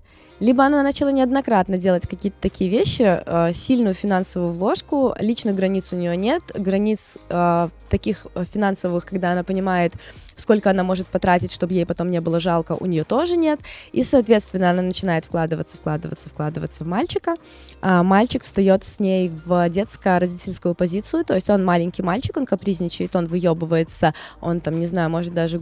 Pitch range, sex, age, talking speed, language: 175-215 Hz, female, 20-39, 150 wpm, Russian